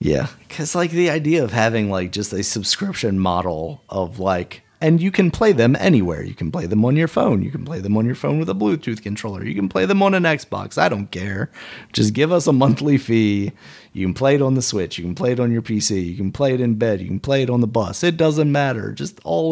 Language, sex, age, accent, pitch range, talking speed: English, male, 30-49, American, 105-145 Hz, 265 wpm